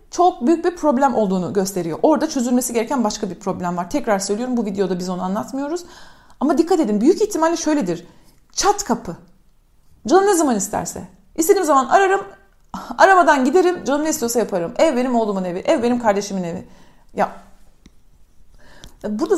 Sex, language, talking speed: female, Turkish, 160 wpm